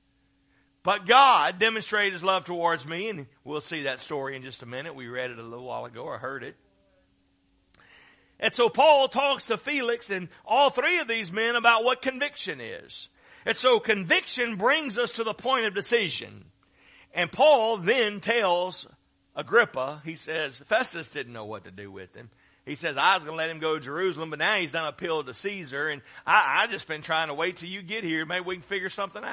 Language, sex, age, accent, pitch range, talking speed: English, male, 50-69, American, 150-235 Hz, 210 wpm